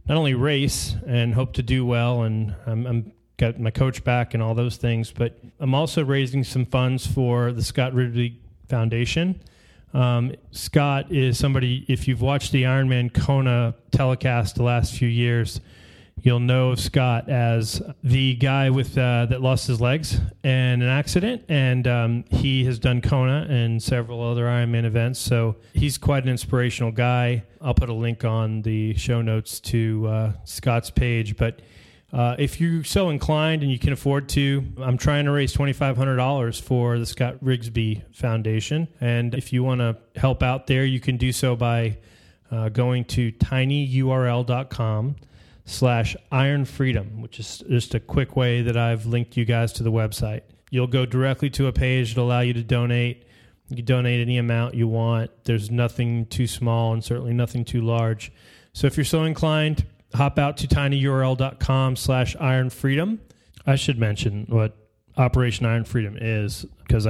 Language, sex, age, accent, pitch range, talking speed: English, male, 30-49, American, 115-130 Hz, 175 wpm